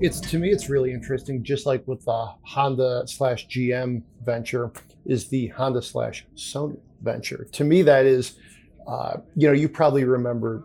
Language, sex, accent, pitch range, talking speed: English, male, American, 125-145 Hz, 170 wpm